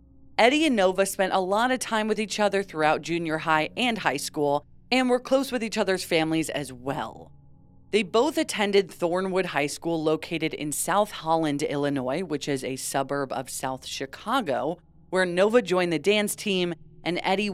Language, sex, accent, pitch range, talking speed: English, female, American, 145-195 Hz, 180 wpm